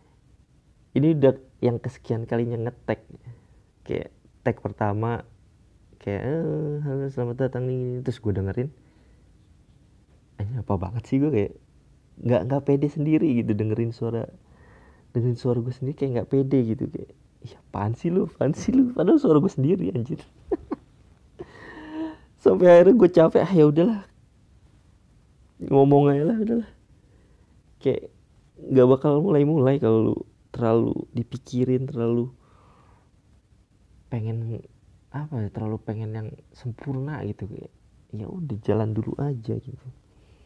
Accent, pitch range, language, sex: native, 105-130 Hz, Indonesian, male